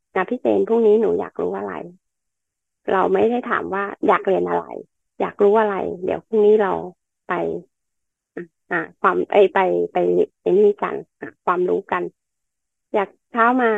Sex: female